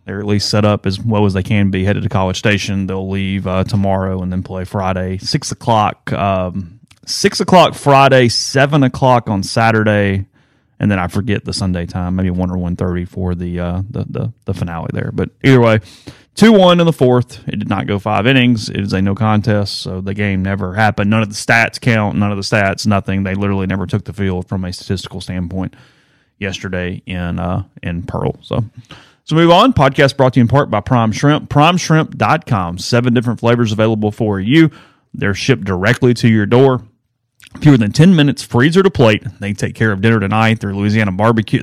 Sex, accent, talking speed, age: male, American, 205 wpm, 30-49